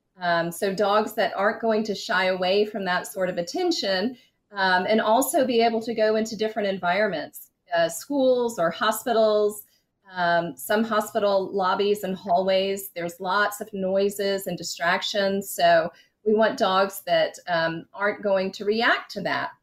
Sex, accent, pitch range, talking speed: female, American, 190-230 Hz, 160 wpm